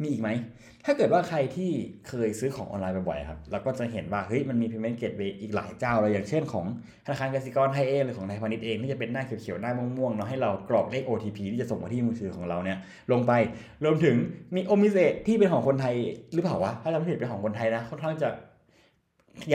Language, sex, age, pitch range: Thai, male, 20-39, 100-125 Hz